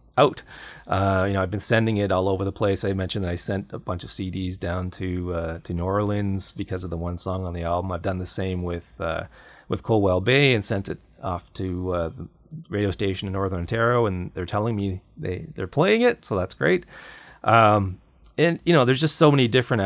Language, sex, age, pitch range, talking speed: English, male, 30-49, 90-125 Hz, 230 wpm